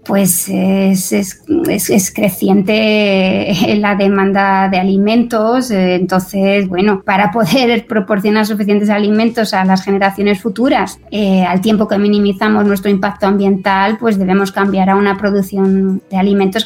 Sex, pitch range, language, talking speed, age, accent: female, 195-220 Hz, Spanish, 135 wpm, 20-39, Spanish